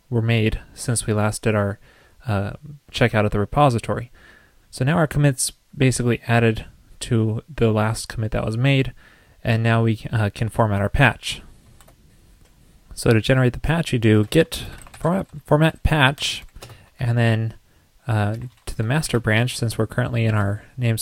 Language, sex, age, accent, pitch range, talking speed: English, male, 20-39, American, 110-130 Hz, 160 wpm